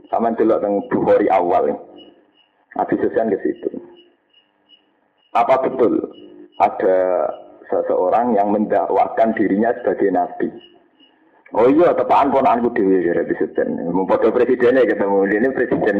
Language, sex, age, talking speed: Indonesian, male, 50-69, 115 wpm